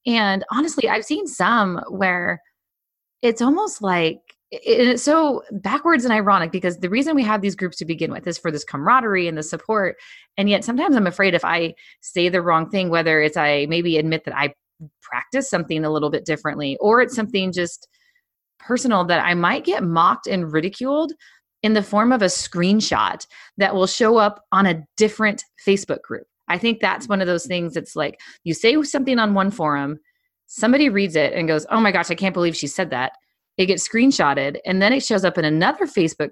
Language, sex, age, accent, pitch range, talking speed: English, female, 20-39, American, 165-240 Hz, 200 wpm